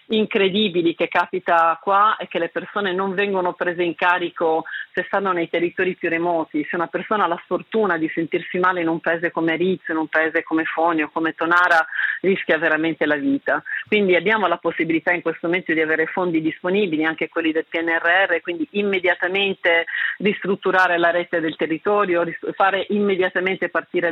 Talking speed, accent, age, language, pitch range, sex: 170 wpm, native, 40-59, Italian, 165-190 Hz, female